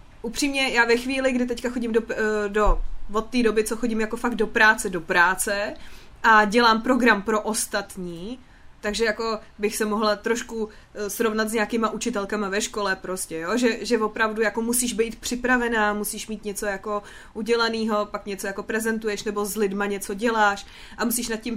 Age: 20-39